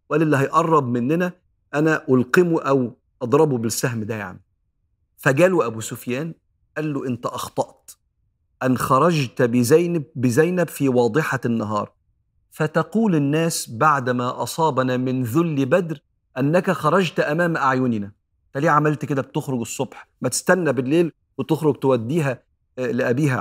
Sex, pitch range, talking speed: male, 120-160 Hz, 125 wpm